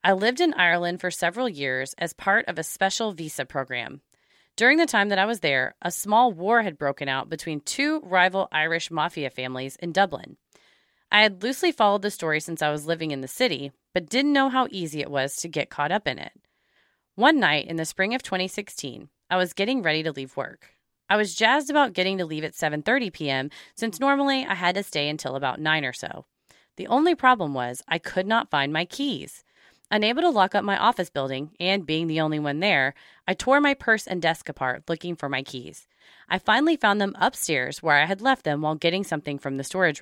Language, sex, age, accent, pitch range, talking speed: English, female, 30-49, American, 150-220 Hz, 220 wpm